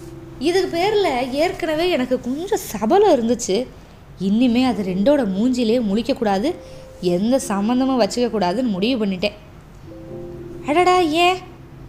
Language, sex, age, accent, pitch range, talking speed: Tamil, female, 20-39, native, 210-275 Hz, 95 wpm